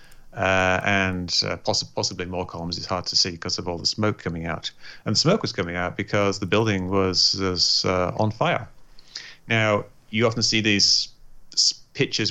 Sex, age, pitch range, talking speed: male, 30-49, 90-105 Hz, 185 wpm